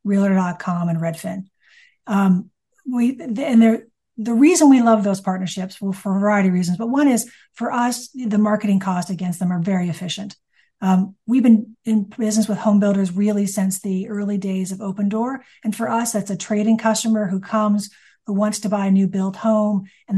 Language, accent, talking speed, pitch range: English, American, 195 wpm, 190-220 Hz